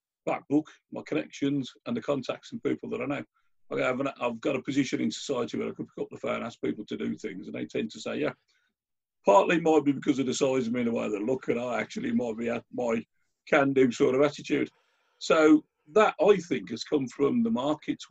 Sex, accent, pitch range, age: male, British, 125-175 Hz, 50-69